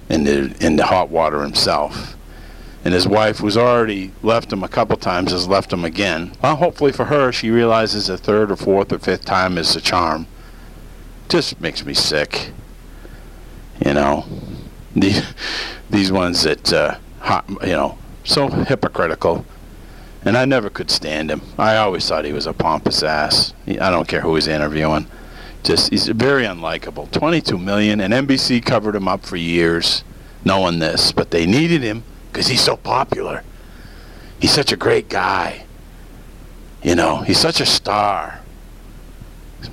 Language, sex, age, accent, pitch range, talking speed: English, male, 50-69, American, 85-110 Hz, 165 wpm